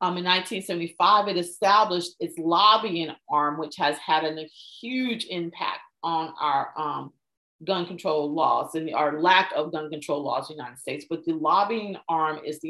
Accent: American